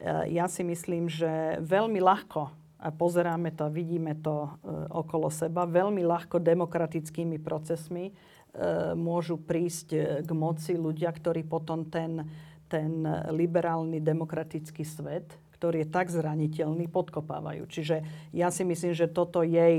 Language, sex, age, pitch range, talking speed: Slovak, female, 40-59, 160-175 Hz, 135 wpm